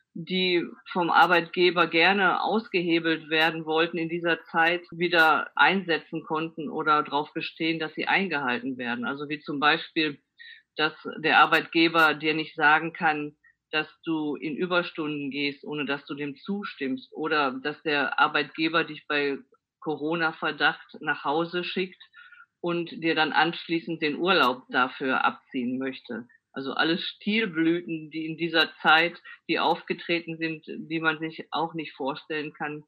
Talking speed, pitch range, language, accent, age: 140 wpm, 155-180 Hz, German, German, 50-69